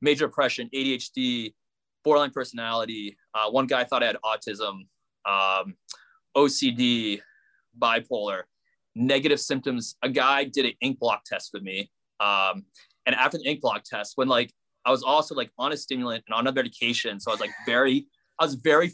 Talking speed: 170 wpm